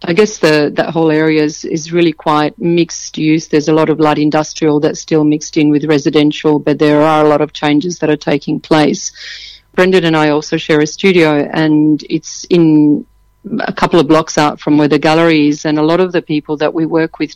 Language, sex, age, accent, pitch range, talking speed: English, female, 40-59, Australian, 150-160 Hz, 220 wpm